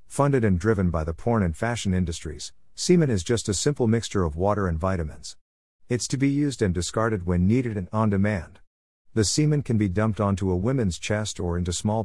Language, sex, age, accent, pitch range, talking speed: English, male, 50-69, American, 85-115 Hz, 210 wpm